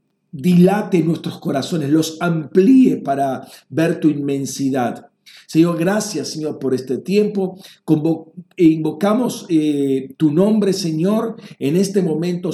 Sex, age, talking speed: male, 50-69, 120 wpm